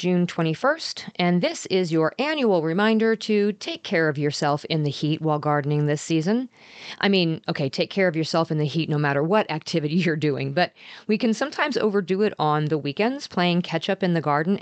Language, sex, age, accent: English, female, 40-59, American